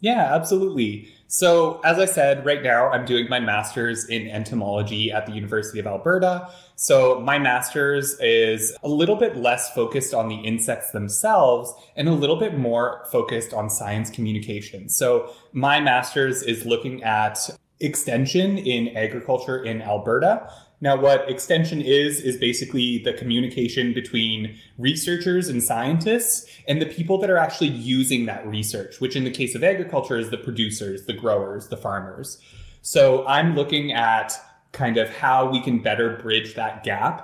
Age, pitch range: 20-39, 110-145 Hz